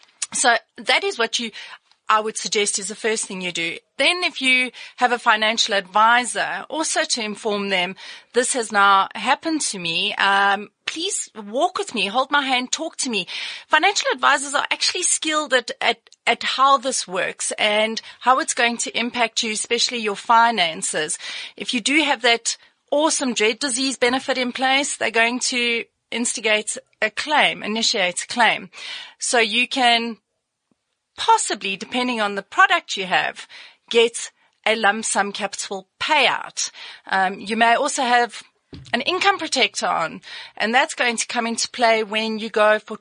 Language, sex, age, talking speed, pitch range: English, female, 30-49, 170 wpm, 215-280 Hz